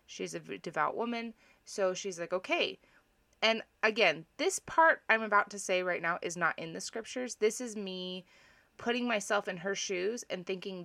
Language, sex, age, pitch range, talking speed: English, female, 20-39, 185-225 Hz, 185 wpm